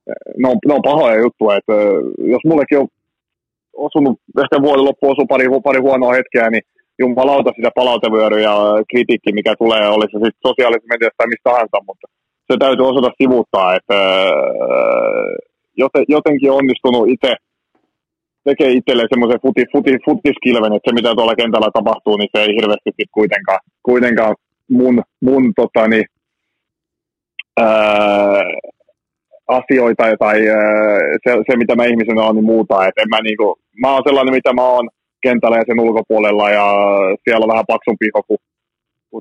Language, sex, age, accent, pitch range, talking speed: Finnish, male, 30-49, native, 105-130 Hz, 145 wpm